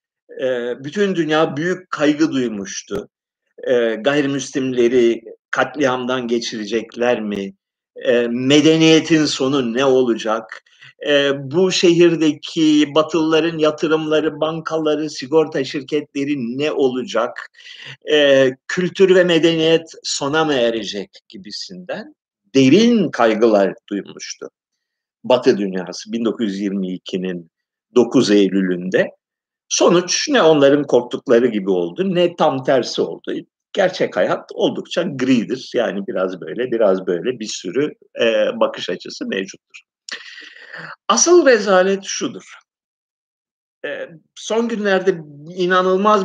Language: Turkish